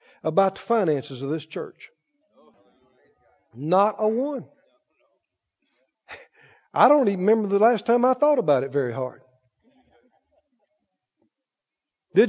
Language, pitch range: English, 195-305 Hz